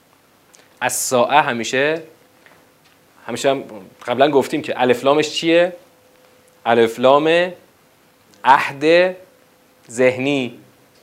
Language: Persian